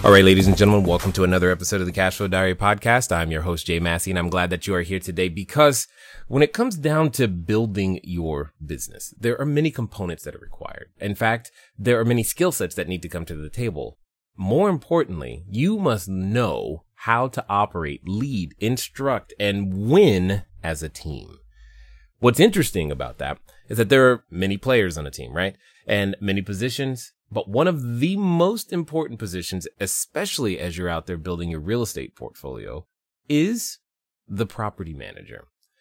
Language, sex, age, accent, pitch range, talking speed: English, male, 30-49, American, 90-130 Hz, 185 wpm